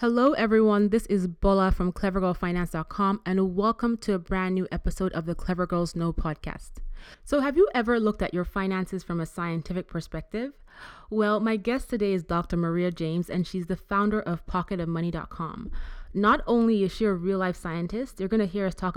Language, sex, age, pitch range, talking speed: English, female, 20-39, 175-205 Hz, 185 wpm